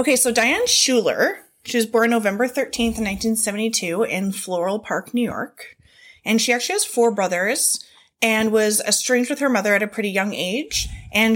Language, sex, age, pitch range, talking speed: English, female, 20-39, 190-235 Hz, 175 wpm